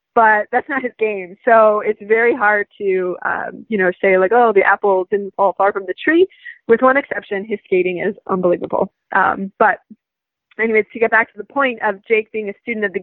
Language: English